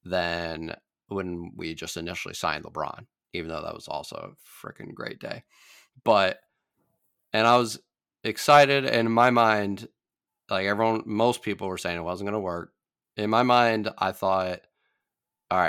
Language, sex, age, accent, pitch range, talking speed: English, male, 30-49, American, 90-110 Hz, 160 wpm